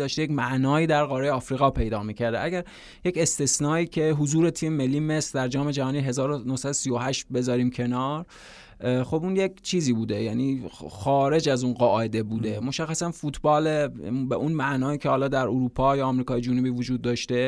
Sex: male